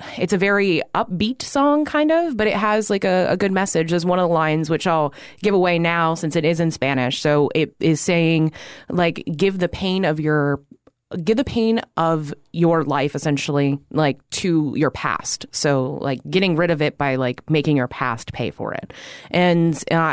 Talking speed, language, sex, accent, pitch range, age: 200 wpm, English, female, American, 145-195 Hz, 20-39